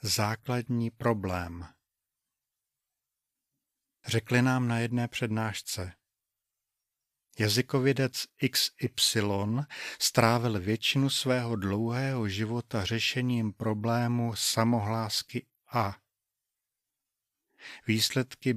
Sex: male